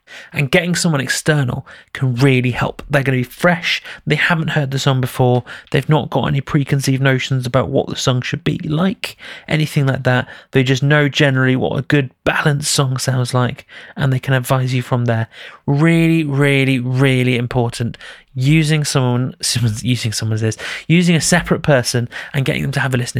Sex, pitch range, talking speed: male, 130-150 Hz, 185 wpm